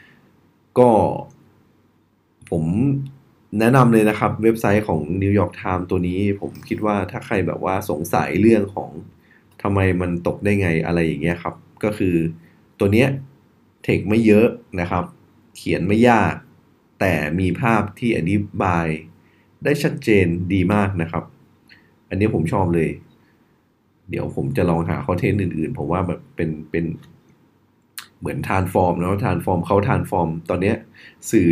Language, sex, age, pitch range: Thai, male, 20-39, 85-105 Hz